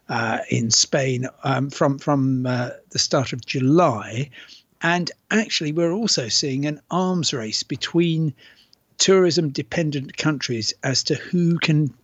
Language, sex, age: English, male, 60-79